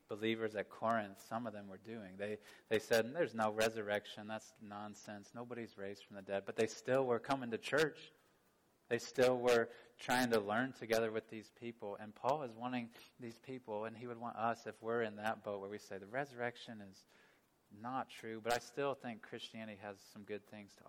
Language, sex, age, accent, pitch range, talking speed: English, male, 20-39, American, 110-125 Hz, 205 wpm